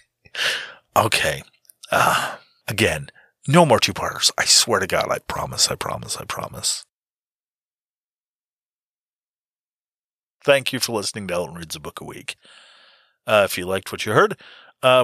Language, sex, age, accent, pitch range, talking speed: English, male, 30-49, American, 105-145 Hz, 140 wpm